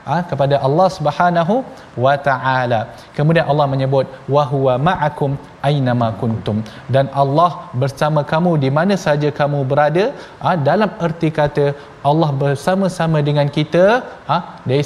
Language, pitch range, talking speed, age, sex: Malayalam, 140-175 Hz, 135 wpm, 20-39, male